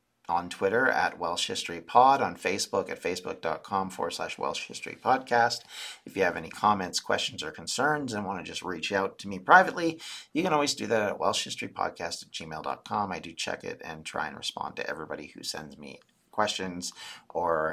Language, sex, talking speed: English, male, 195 wpm